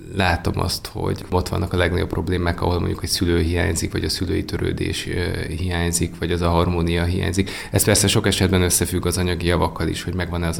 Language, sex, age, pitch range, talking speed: Hungarian, male, 20-39, 90-100 Hz, 200 wpm